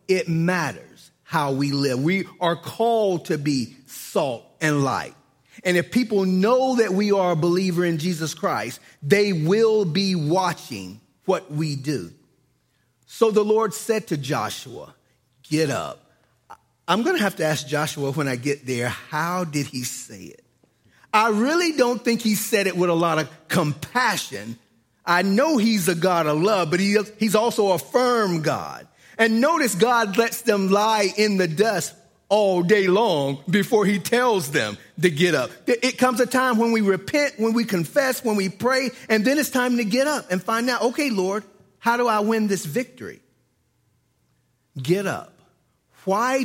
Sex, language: male, English